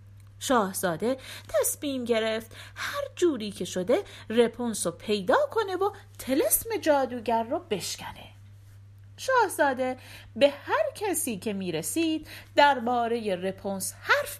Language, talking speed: Persian, 110 wpm